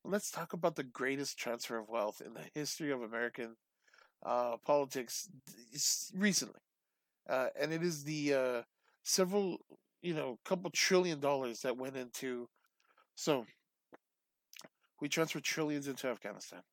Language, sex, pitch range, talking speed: English, male, 125-155 Hz, 135 wpm